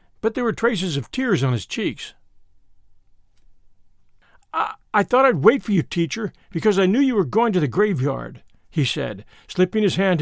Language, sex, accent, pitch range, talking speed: English, male, American, 140-215 Hz, 180 wpm